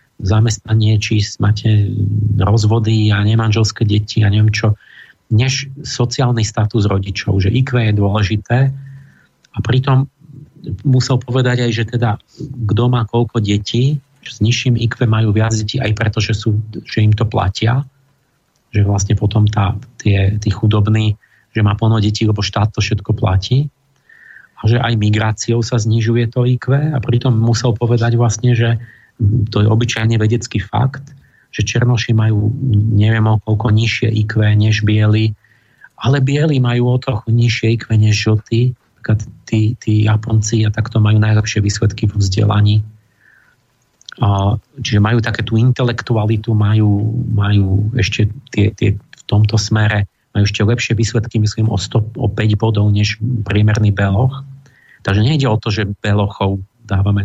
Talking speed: 150 wpm